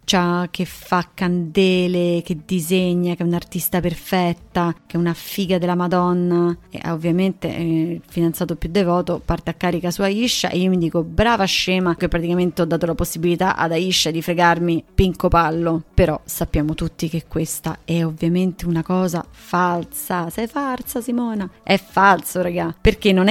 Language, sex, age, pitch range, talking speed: Italian, female, 20-39, 175-200 Hz, 165 wpm